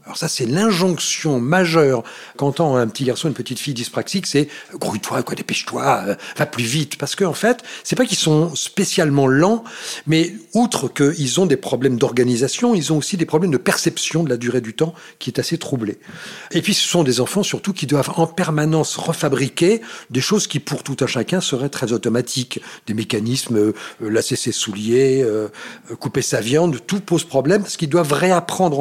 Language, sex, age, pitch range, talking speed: French, male, 40-59, 135-185 Hz, 200 wpm